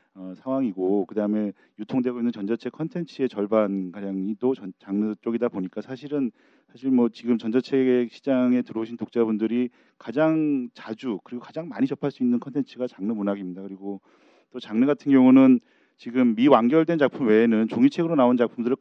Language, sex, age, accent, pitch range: Korean, male, 40-59, native, 105-135 Hz